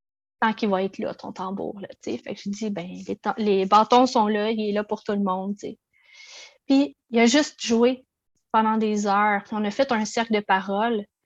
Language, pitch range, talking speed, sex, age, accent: French, 200-235 Hz, 235 wpm, female, 30-49, Canadian